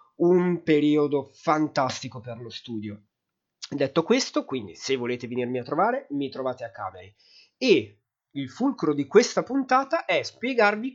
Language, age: Italian, 30-49